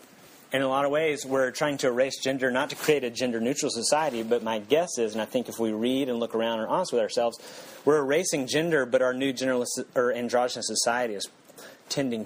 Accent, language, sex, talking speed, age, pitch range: American, English, male, 225 wpm, 30-49, 115-140 Hz